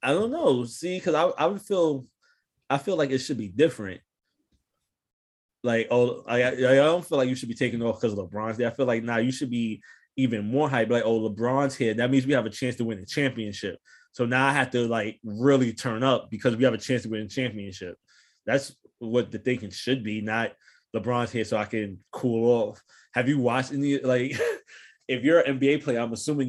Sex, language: male, English